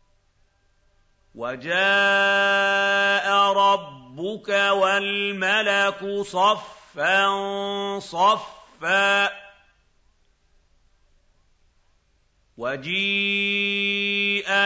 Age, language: 50-69, Arabic